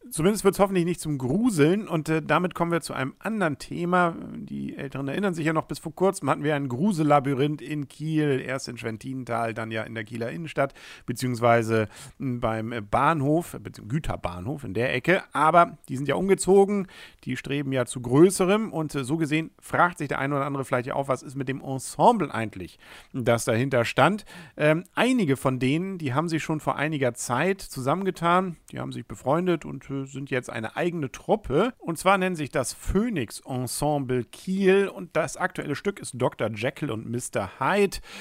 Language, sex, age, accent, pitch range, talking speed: German, male, 50-69, German, 120-170 Hz, 185 wpm